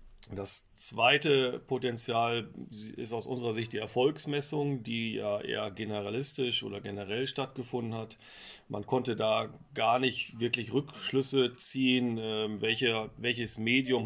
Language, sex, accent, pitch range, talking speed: German, male, German, 105-125 Hz, 115 wpm